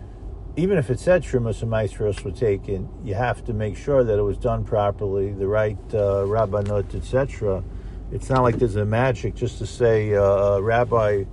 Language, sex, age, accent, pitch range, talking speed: English, male, 50-69, American, 95-120 Hz, 190 wpm